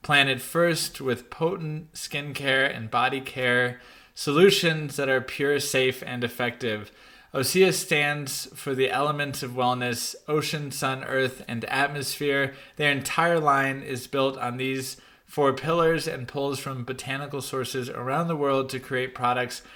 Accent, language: American, English